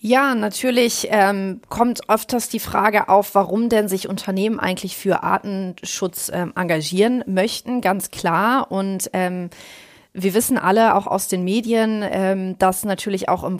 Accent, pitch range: German, 190-230 Hz